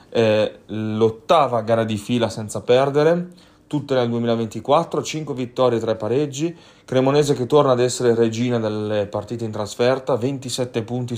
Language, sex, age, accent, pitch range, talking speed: Italian, male, 30-49, native, 110-130 Hz, 140 wpm